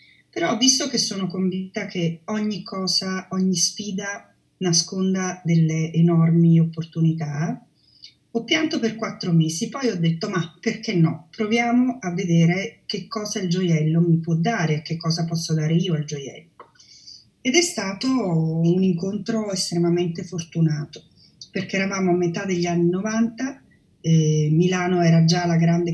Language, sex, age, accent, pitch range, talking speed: Italian, female, 30-49, native, 165-200 Hz, 145 wpm